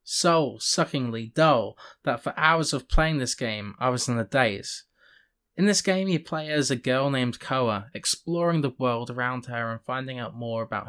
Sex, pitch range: male, 115-150 Hz